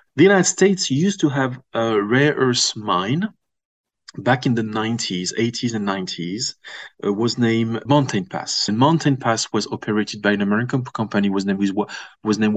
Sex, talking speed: male, 165 wpm